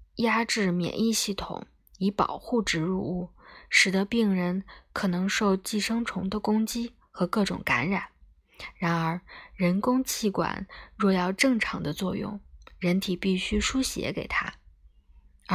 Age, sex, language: 20-39, female, Chinese